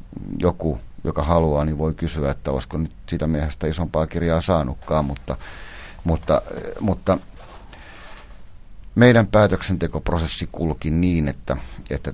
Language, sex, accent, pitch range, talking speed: Finnish, male, native, 70-95 Hz, 115 wpm